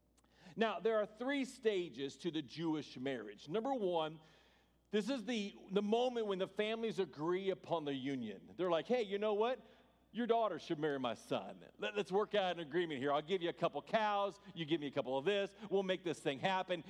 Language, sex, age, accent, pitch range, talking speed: English, male, 50-69, American, 175-235 Hz, 215 wpm